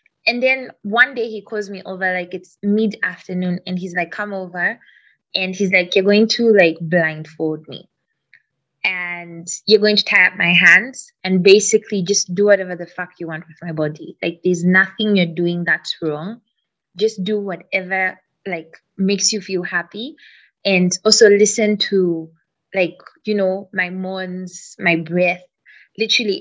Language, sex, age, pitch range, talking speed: English, female, 20-39, 175-210 Hz, 165 wpm